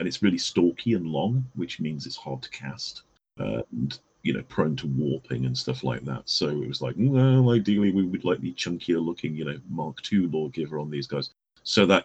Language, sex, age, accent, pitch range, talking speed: English, male, 40-59, British, 70-85 Hz, 220 wpm